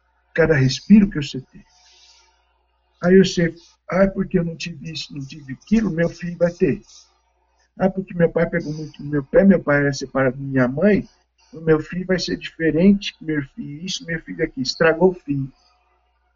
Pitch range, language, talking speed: 130-195 Hz, Portuguese, 190 wpm